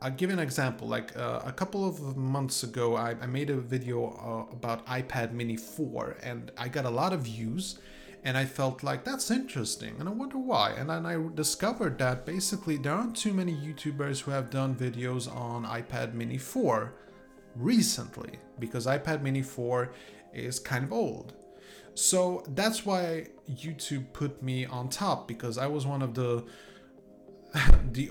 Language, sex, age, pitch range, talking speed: English, male, 30-49, 125-155 Hz, 175 wpm